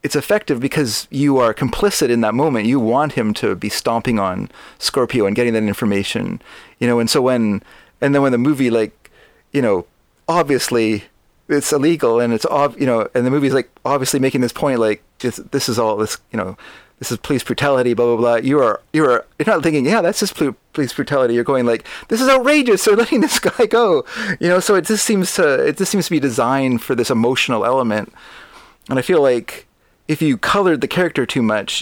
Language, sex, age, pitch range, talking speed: English, male, 30-49, 115-145 Hz, 215 wpm